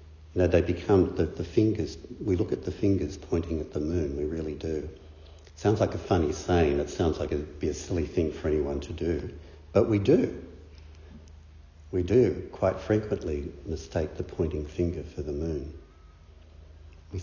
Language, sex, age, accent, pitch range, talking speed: English, male, 60-79, Australian, 80-90 Hz, 180 wpm